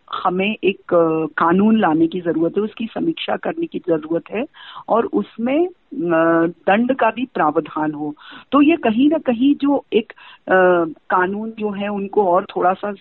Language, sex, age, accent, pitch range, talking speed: Hindi, female, 40-59, native, 170-235 Hz, 155 wpm